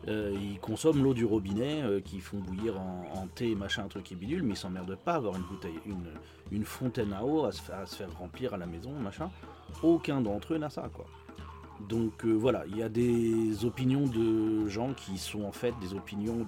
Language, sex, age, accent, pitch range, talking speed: French, male, 40-59, French, 95-125 Hz, 230 wpm